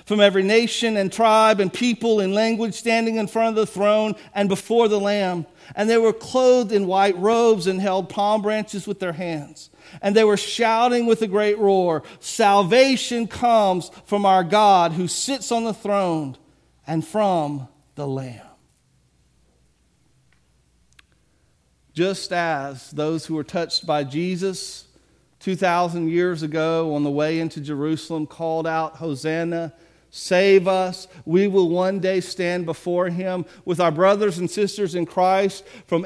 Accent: American